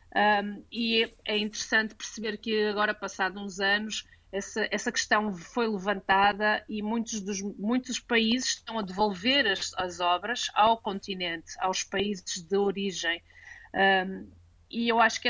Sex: female